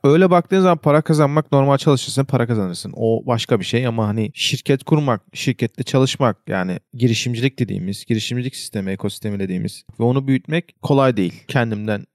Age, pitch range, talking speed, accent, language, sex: 40-59, 110-140 Hz, 160 wpm, native, Turkish, male